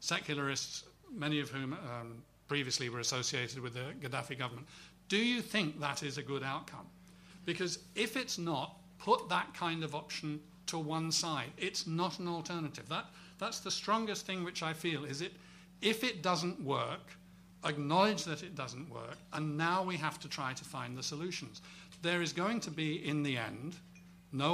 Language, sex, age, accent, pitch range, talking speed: English, male, 50-69, British, 140-175 Hz, 180 wpm